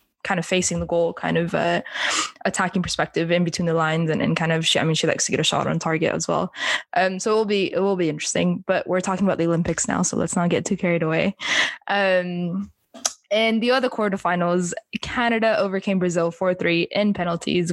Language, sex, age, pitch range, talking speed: English, female, 10-29, 170-195 Hz, 220 wpm